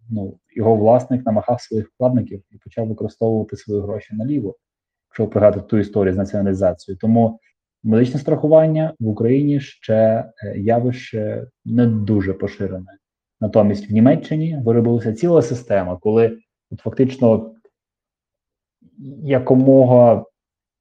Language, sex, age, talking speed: Ukrainian, male, 20-39, 110 wpm